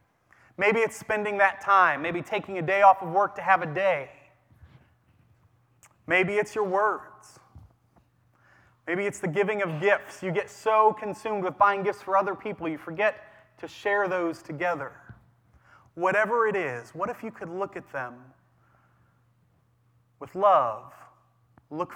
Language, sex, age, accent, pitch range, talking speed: English, male, 30-49, American, 130-205 Hz, 150 wpm